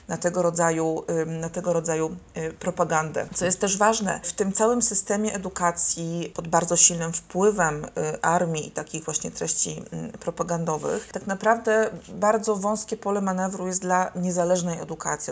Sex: female